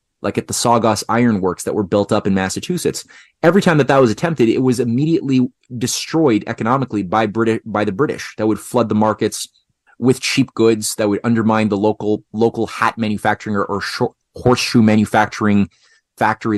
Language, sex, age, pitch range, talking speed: English, male, 30-49, 105-125 Hz, 175 wpm